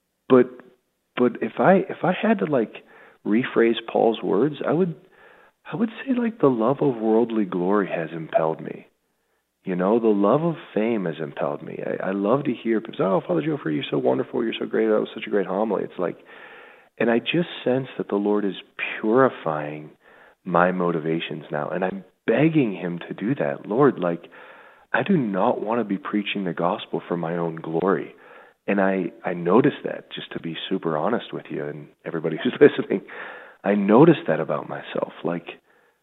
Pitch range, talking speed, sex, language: 80-125 Hz, 190 wpm, male, English